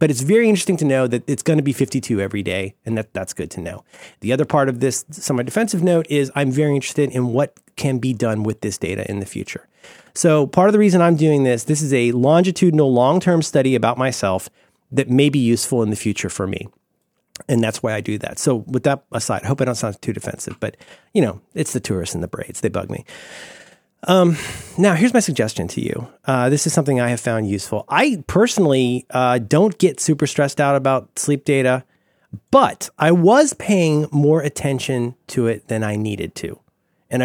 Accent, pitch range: American, 115-175 Hz